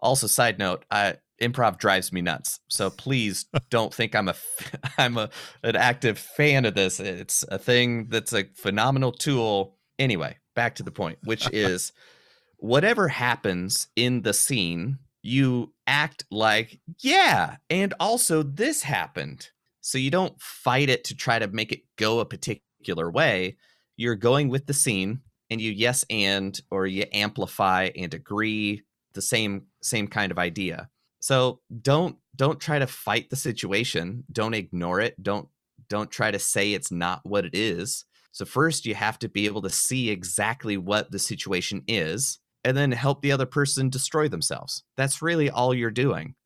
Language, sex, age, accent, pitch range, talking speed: English, male, 30-49, American, 105-145 Hz, 170 wpm